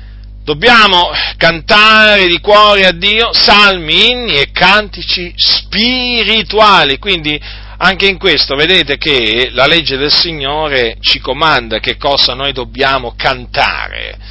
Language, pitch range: Italian, 150-200 Hz